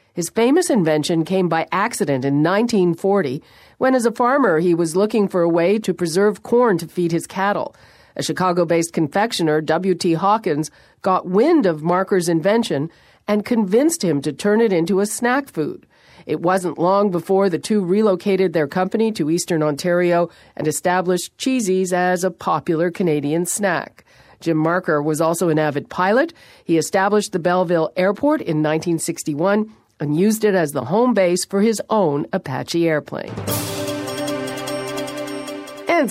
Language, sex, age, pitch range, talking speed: English, female, 50-69, 160-205 Hz, 155 wpm